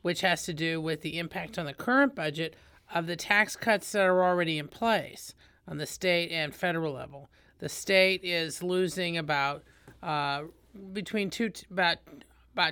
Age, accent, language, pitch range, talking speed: 40-59, American, English, 155-195 Hz, 170 wpm